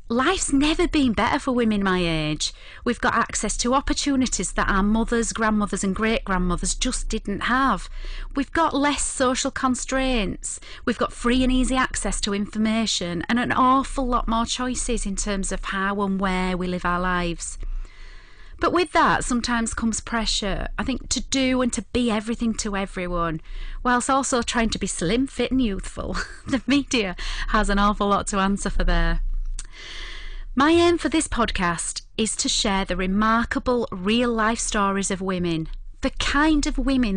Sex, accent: female, British